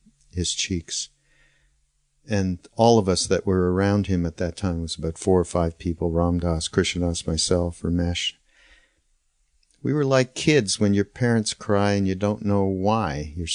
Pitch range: 90-110 Hz